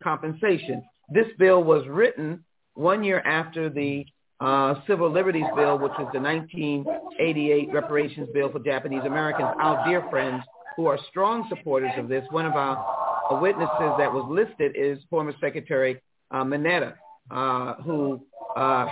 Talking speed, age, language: 145 wpm, 50-69, English